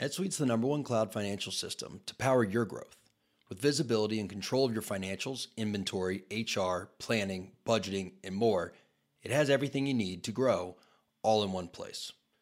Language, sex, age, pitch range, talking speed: English, male, 30-49, 100-130 Hz, 170 wpm